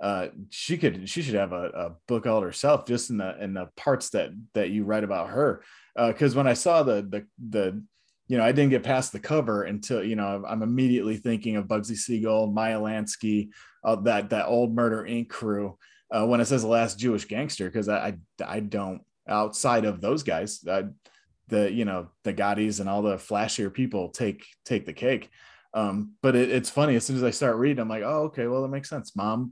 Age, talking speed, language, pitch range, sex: 20-39, 220 wpm, English, 105-130 Hz, male